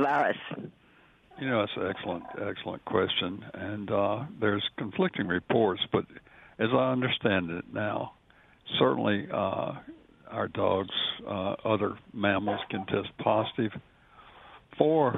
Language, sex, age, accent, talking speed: English, male, 60-79, American, 115 wpm